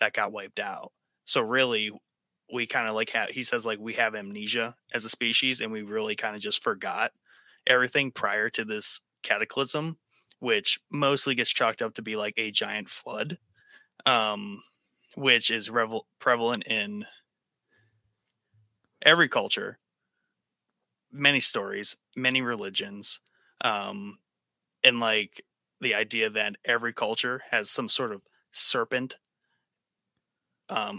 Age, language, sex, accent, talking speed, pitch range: 30-49, English, male, American, 130 wpm, 110-135 Hz